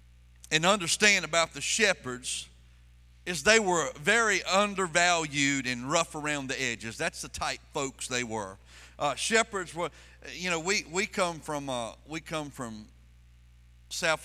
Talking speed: 145 wpm